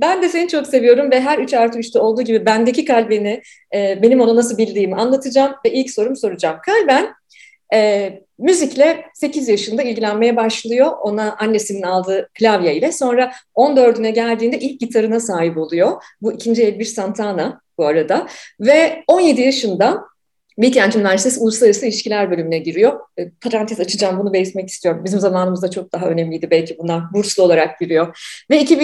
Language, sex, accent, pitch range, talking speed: Turkish, female, native, 195-265 Hz, 150 wpm